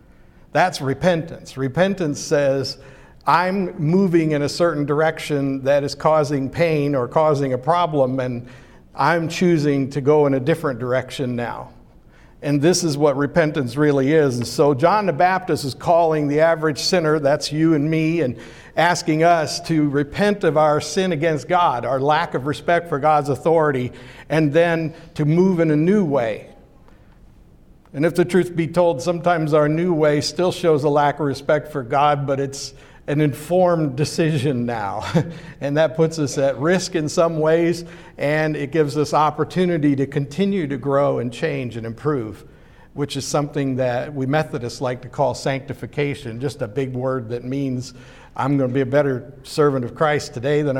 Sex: male